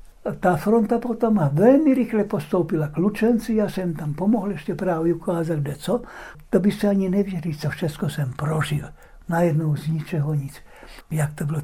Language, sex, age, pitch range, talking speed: Czech, male, 60-79, 170-210 Hz, 170 wpm